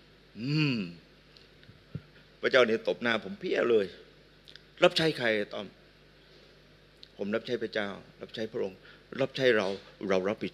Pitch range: 110-140 Hz